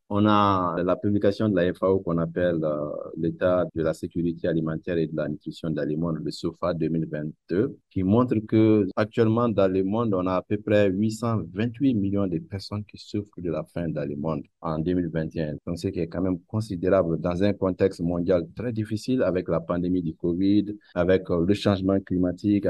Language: French